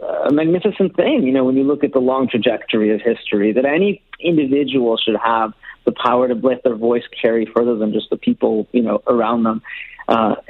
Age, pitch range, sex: 40-59, 120-155 Hz, male